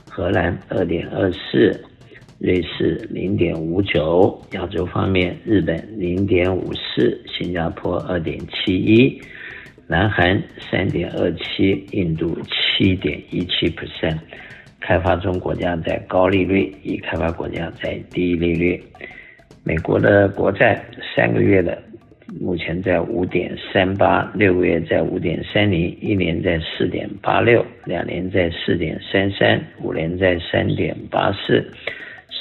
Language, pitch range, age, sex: Chinese, 85-95 Hz, 50-69, male